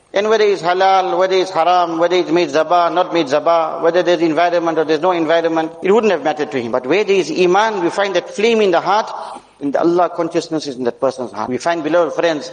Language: English